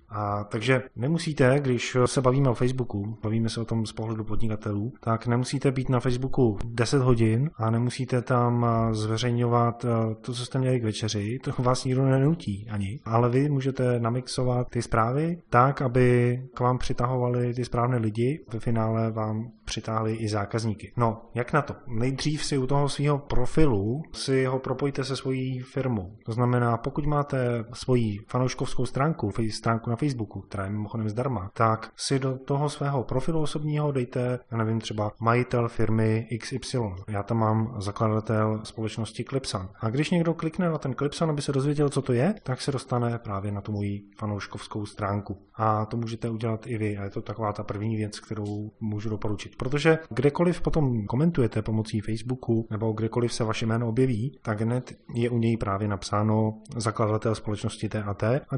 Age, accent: 20-39, native